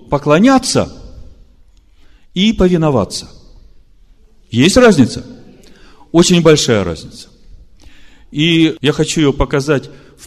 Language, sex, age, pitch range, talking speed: Russian, male, 40-59, 115-175 Hz, 80 wpm